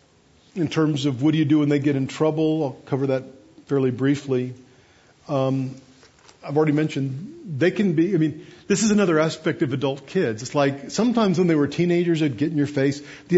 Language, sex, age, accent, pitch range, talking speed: English, male, 50-69, American, 135-170 Hz, 205 wpm